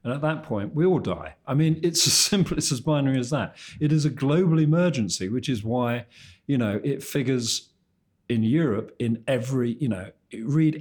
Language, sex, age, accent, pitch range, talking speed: English, male, 50-69, British, 105-135 Hz, 200 wpm